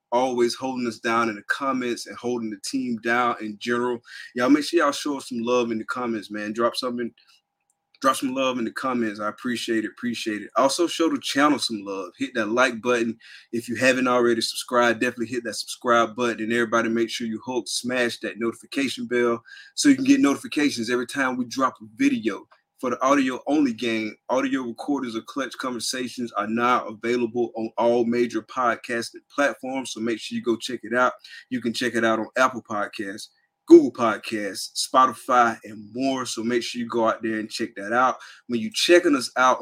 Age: 20-39